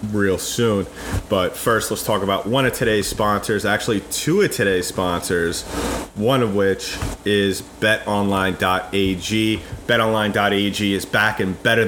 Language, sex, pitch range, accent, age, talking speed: English, male, 95-110 Hz, American, 30-49, 130 wpm